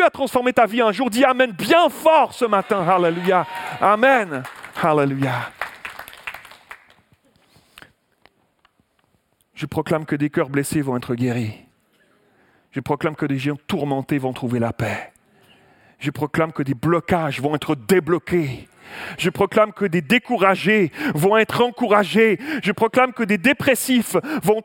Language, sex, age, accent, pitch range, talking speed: French, male, 40-59, French, 180-265 Hz, 135 wpm